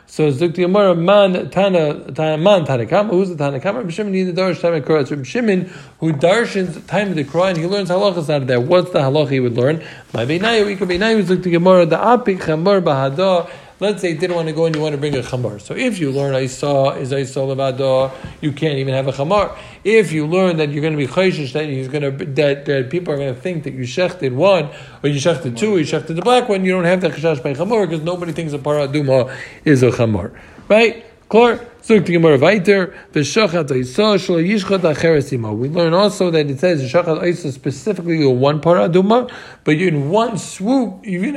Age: 50-69